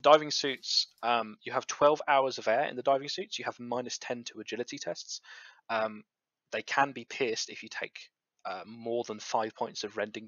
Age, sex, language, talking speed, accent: 20-39, male, English, 205 wpm, British